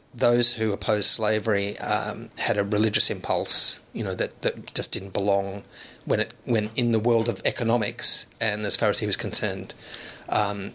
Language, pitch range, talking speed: English, 105-120 Hz, 180 wpm